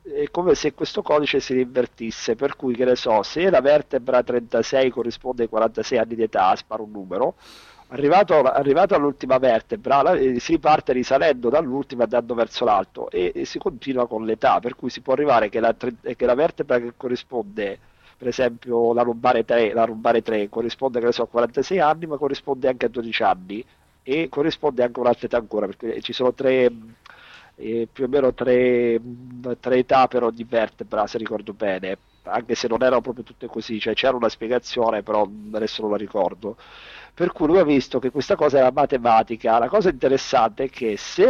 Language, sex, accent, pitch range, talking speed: Italian, male, native, 115-135 Hz, 190 wpm